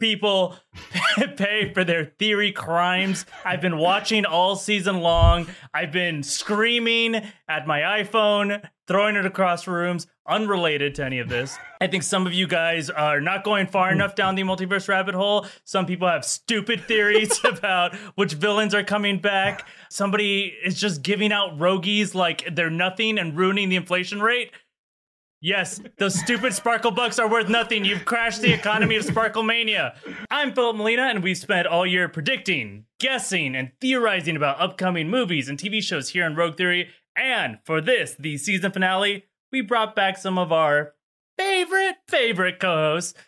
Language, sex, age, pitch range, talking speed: English, male, 20-39, 175-220 Hz, 165 wpm